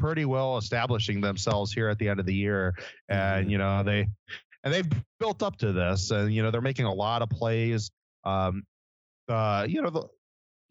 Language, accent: English, American